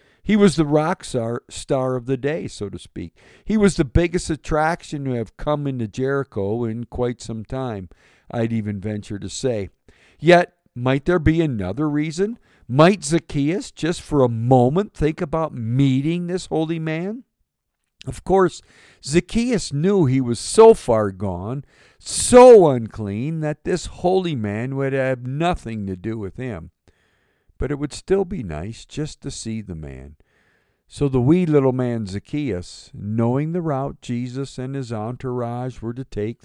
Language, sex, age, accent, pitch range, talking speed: English, male, 50-69, American, 110-150 Hz, 160 wpm